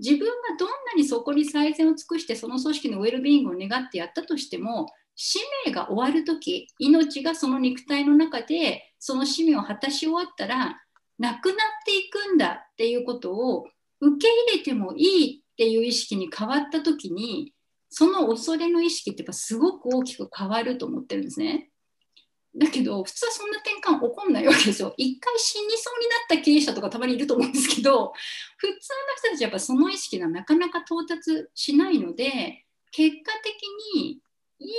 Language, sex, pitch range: Japanese, female, 255-335 Hz